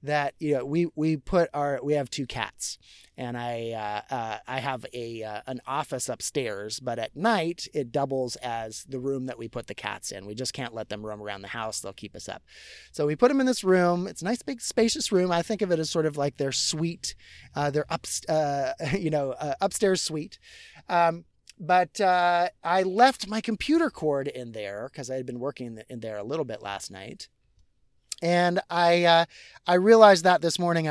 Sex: male